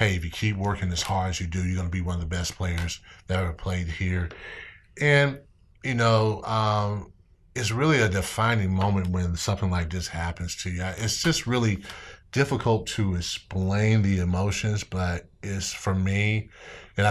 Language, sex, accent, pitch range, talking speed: English, male, American, 90-105 Hz, 180 wpm